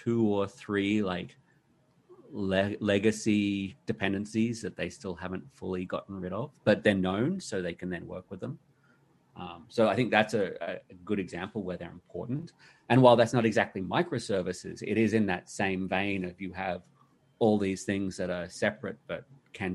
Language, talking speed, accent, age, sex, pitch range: English, 180 wpm, Australian, 30-49, male, 95-125 Hz